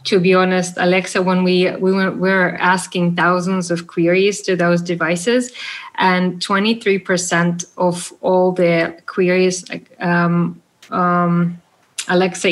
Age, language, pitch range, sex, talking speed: 20-39, English, 170-185 Hz, female, 120 wpm